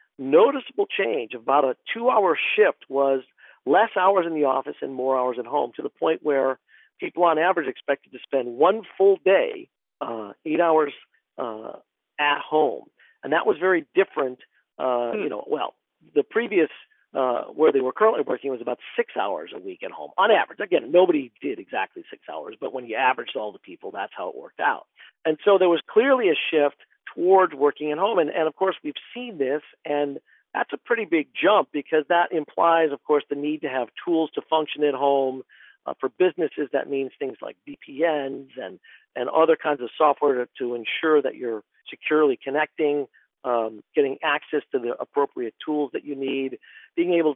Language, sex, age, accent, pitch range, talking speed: English, male, 50-69, American, 135-185 Hz, 190 wpm